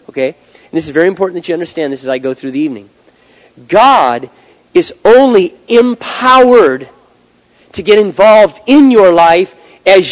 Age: 40-59